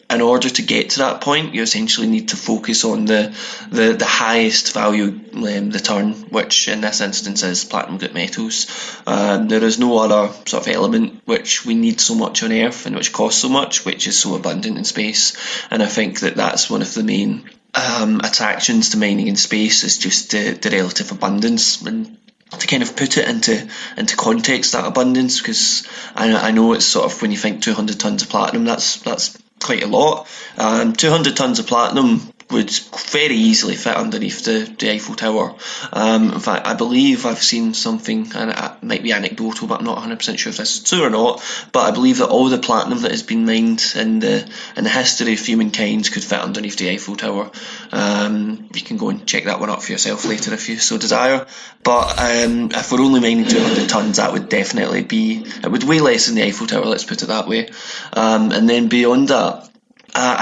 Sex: male